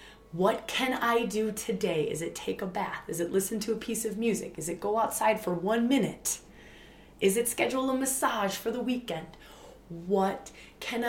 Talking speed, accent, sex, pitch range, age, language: 190 wpm, American, female, 180-225 Hz, 20-39, English